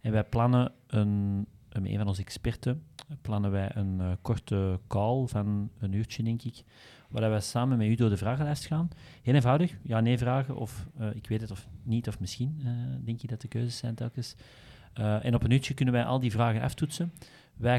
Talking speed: 200 wpm